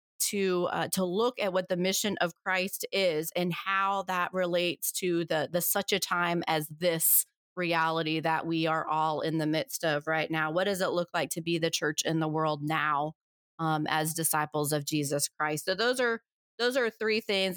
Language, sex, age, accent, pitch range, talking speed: English, female, 30-49, American, 165-190 Hz, 205 wpm